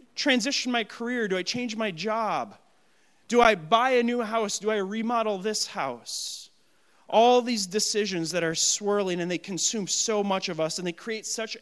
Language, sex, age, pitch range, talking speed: English, male, 30-49, 170-215 Hz, 185 wpm